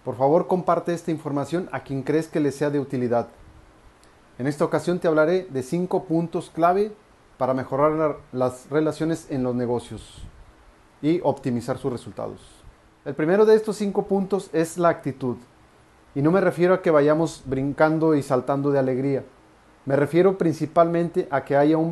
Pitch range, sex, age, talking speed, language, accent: 125-165 Hz, male, 30-49, 165 wpm, Spanish, Mexican